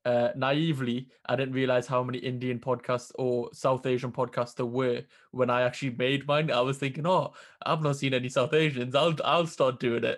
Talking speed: 205 wpm